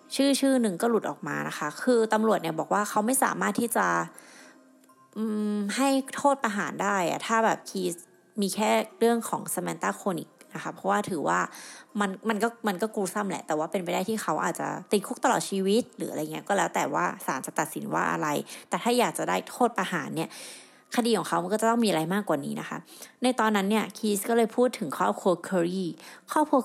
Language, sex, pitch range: Thai, female, 175-235 Hz